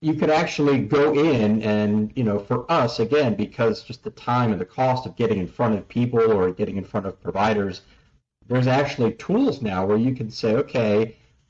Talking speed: 205 wpm